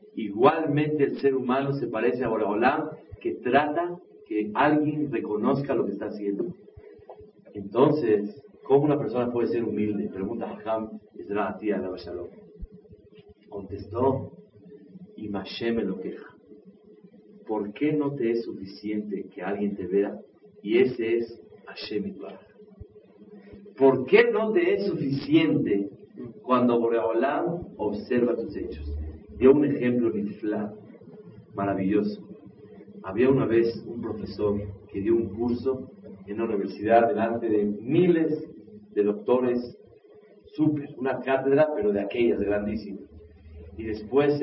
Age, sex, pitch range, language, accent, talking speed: 40-59, male, 105-145 Hz, Spanish, Mexican, 120 wpm